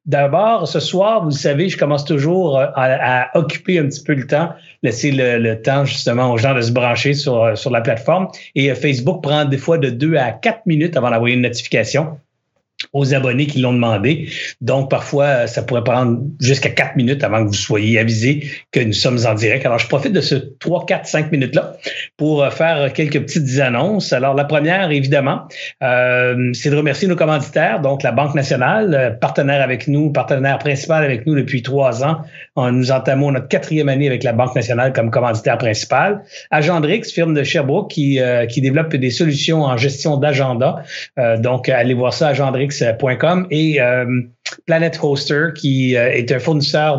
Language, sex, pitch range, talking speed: French, male, 125-150 Hz, 185 wpm